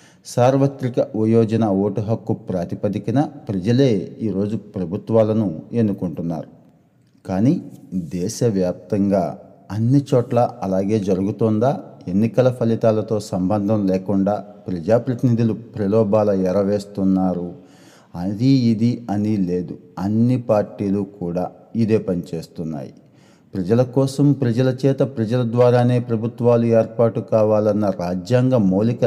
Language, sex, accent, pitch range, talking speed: Telugu, male, native, 95-115 Hz, 85 wpm